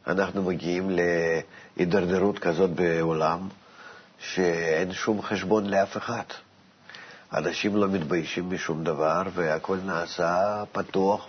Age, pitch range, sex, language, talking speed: 50-69, 85-100 Hz, male, Hebrew, 95 wpm